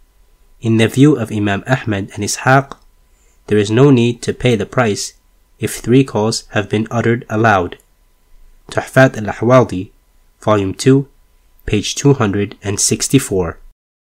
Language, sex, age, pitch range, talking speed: English, male, 20-39, 100-130 Hz, 125 wpm